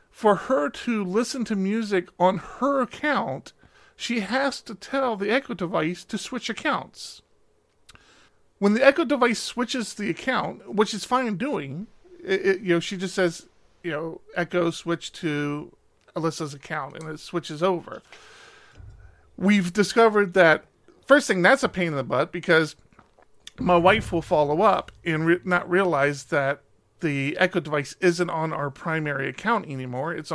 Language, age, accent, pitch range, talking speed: English, 40-59, American, 155-220 Hz, 160 wpm